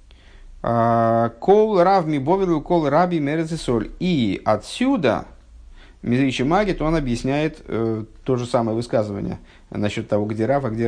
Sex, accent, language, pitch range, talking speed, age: male, native, Russian, 110-145 Hz, 95 wpm, 50-69